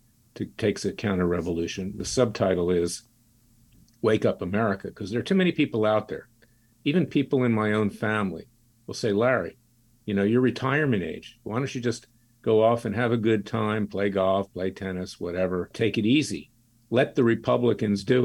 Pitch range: 100-120 Hz